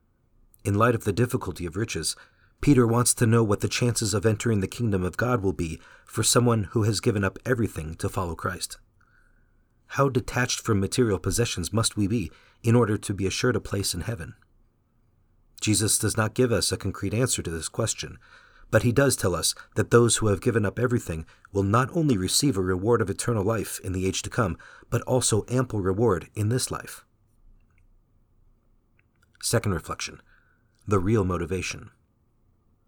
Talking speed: 180 wpm